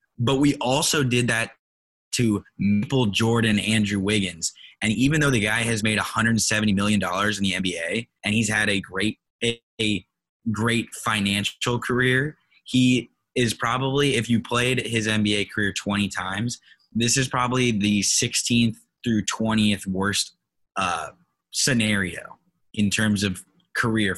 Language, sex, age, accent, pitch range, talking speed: English, male, 20-39, American, 100-120 Hz, 135 wpm